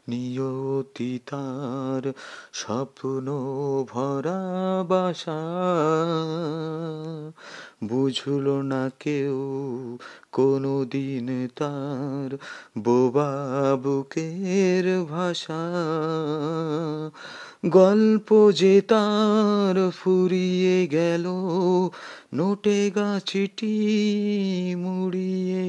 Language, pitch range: Bengali, 155-190 Hz